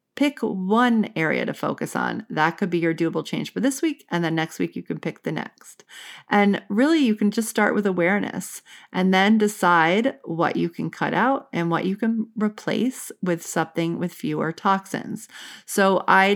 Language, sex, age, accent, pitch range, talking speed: English, female, 40-59, American, 170-215 Hz, 190 wpm